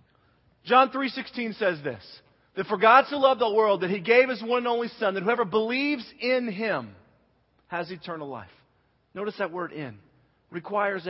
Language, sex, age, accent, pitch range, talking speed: English, male, 40-59, American, 160-230 Hz, 175 wpm